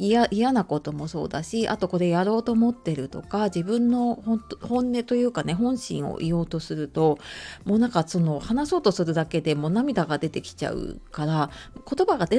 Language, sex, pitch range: Japanese, female, 165-235 Hz